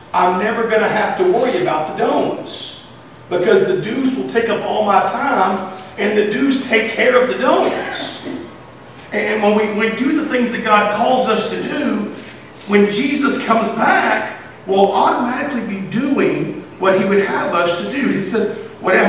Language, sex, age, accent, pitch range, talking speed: English, male, 50-69, American, 185-235 Hz, 185 wpm